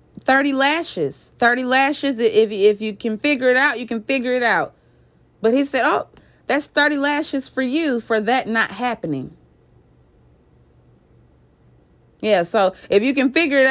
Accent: American